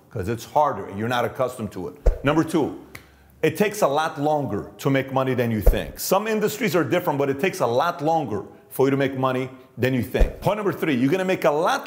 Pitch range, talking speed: 130-170 Hz, 245 wpm